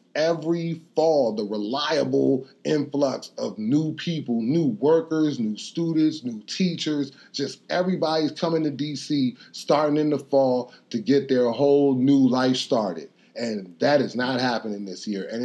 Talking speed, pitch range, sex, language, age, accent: 150 wpm, 135-175 Hz, male, English, 30-49, American